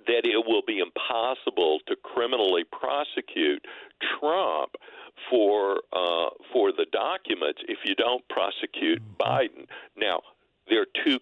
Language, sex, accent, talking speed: English, male, American, 125 wpm